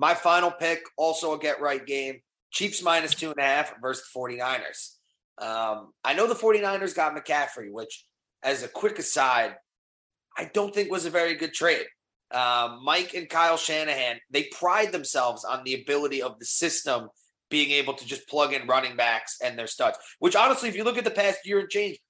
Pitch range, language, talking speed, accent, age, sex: 130-190 Hz, English, 195 wpm, American, 30-49, male